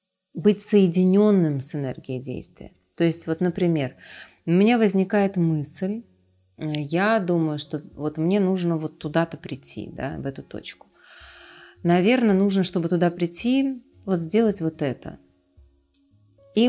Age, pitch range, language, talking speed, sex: 30-49, 160-205 Hz, Russian, 130 wpm, female